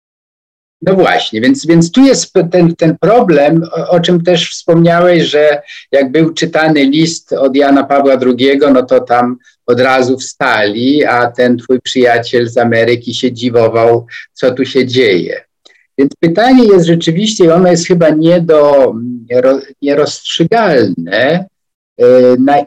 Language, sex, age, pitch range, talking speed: Polish, male, 50-69, 125-170 Hz, 130 wpm